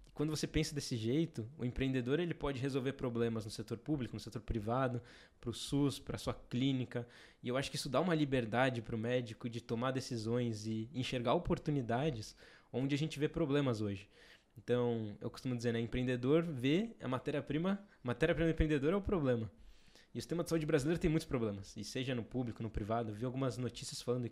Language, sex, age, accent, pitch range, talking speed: Portuguese, male, 20-39, Brazilian, 115-155 Hz, 200 wpm